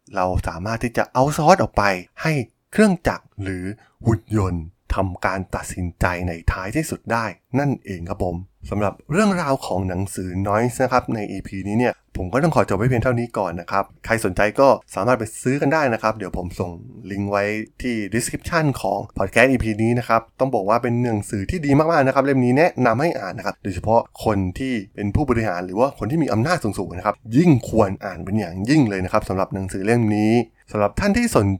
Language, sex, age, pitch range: Thai, male, 20-39, 95-120 Hz